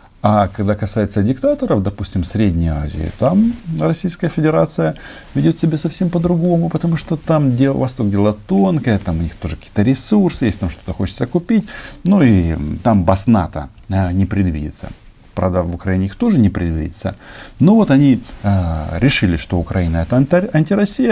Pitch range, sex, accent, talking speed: 95-135 Hz, male, native, 150 wpm